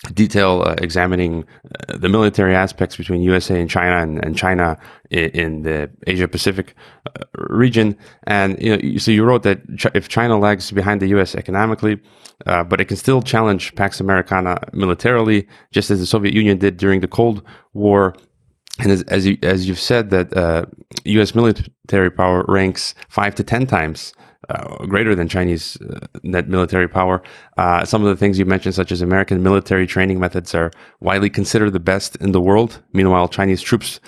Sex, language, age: male, English, 30-49